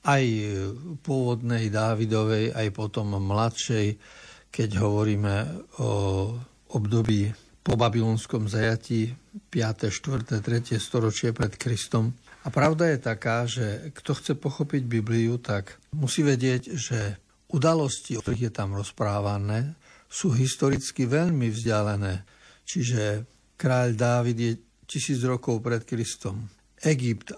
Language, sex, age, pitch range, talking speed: Slovak, male, 60-79, 110-130 Hz, 110 wpm